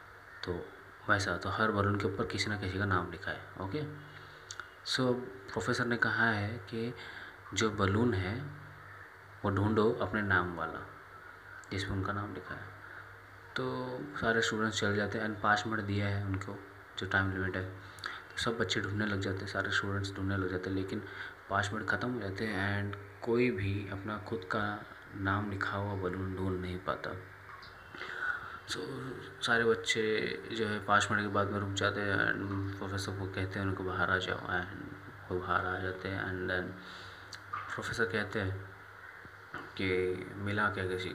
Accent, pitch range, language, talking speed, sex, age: native, 95-105 Hz, Hindi, 180 wpm, male, 30-49